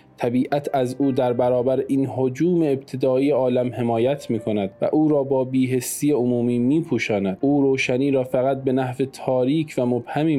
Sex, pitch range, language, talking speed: male, 115-130 Hz, Persian, 155 wpm